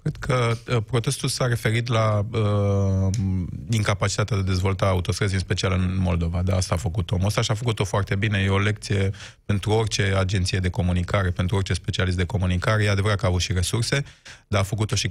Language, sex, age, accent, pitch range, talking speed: Romanian, male, 20-39, native, 90-110 Hz, 205 wpm